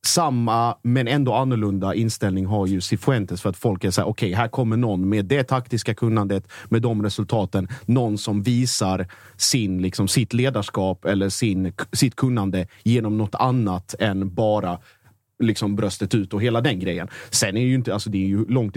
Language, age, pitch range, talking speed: Swedish, 30-49, 100-120 Hz, 190 wpm